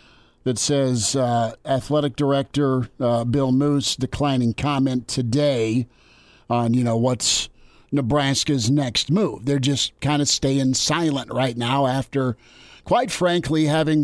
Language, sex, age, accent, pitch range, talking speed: English, male, 50-69, American, 125-150 Hz, 130 wpm